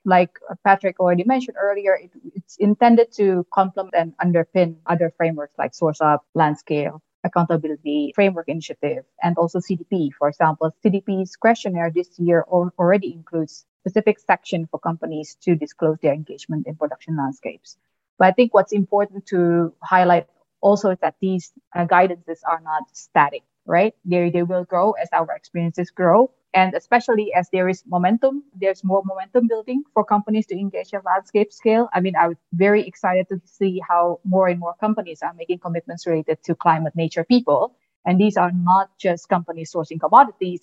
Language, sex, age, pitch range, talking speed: English, female, 20-39, 165-195 Hz, 170 wpm